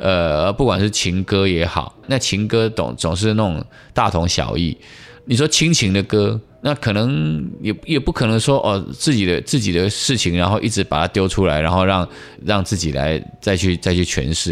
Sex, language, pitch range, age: male, Chinese, 85-115 Hz, 20-39